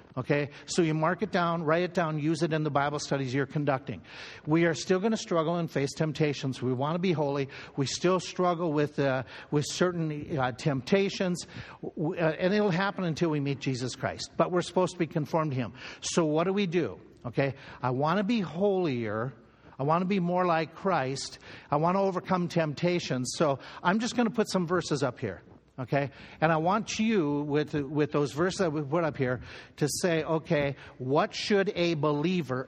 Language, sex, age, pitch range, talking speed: English, male, 60-79, 135-175 Hz, 205 wpm